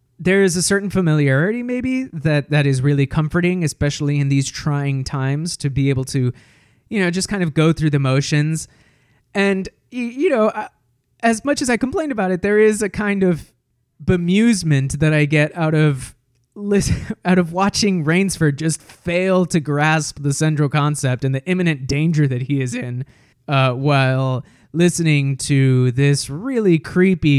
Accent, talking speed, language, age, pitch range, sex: American, 165 wpm, English, 20-39, 135-175 Hz, male